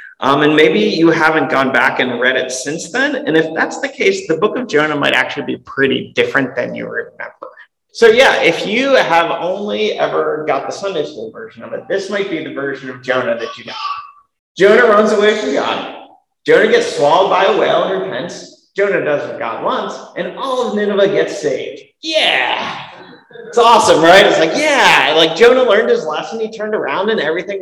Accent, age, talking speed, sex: American, 30-49, 205 wpm, male